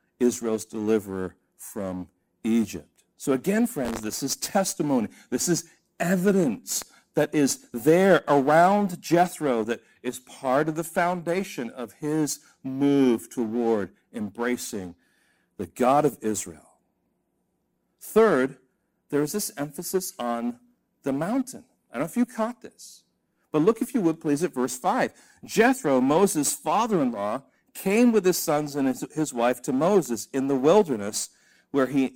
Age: 60-79